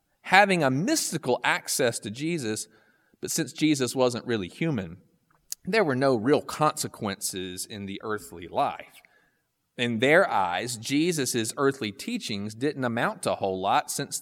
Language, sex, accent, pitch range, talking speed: English, male, American, 115-165 Hz, 145 wpm